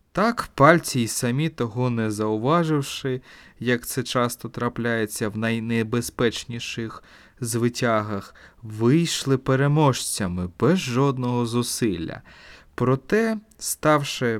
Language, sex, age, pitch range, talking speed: Ukrainian, male, 20-39, 115-145 Hz, 90 wpm